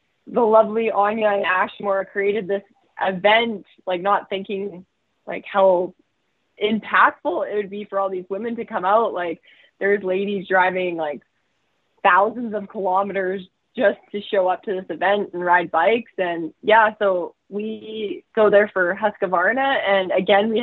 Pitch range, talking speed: 185-220 Hz, 155 wpm